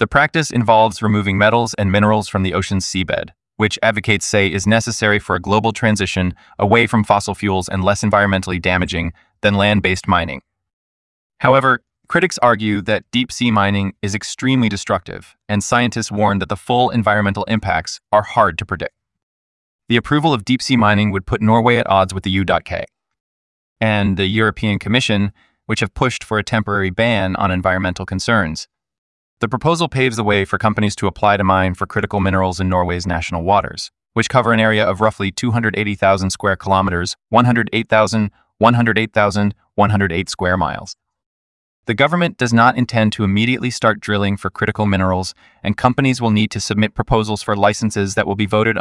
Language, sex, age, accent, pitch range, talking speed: English, male, 20-39, American, 95-115 Hz, 170 wpm